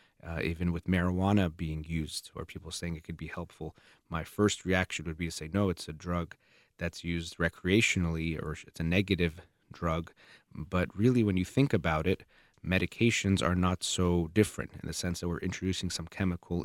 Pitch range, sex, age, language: 85-100 Hz, male, 30-49, English